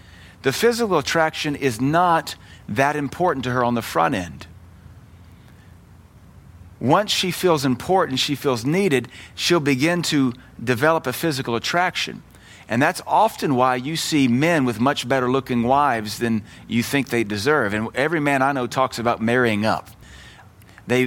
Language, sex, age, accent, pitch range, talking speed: English, male, 40-59, American, 115-150 Hz, 155 wpm